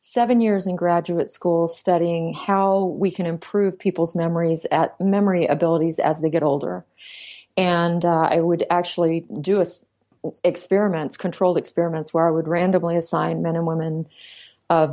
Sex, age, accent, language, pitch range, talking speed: female, 40-59, American, English, 165-195 Hz, 150 wpm